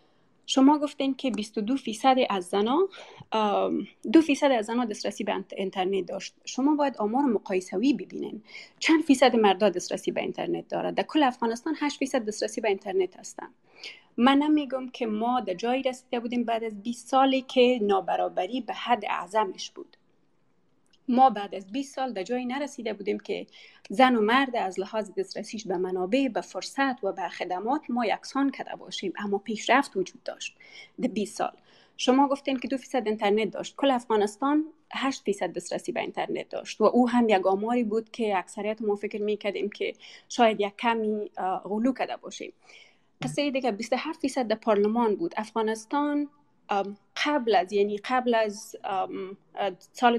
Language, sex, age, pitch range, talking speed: Persian, female, 30-49, 205-275 Hz, 165 wpm